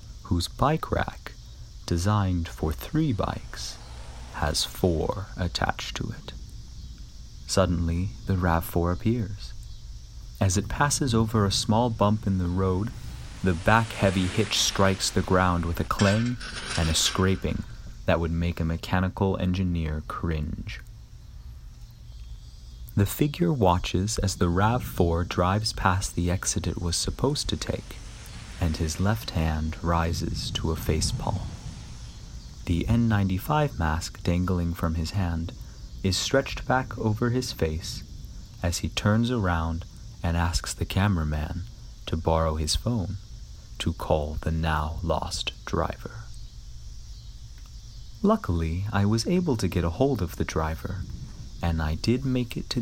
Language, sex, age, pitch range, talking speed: English, male, 30-49, 80-110 Hz, 135 wpm